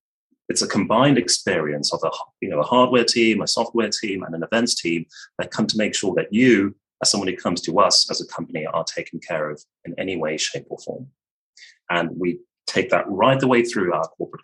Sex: male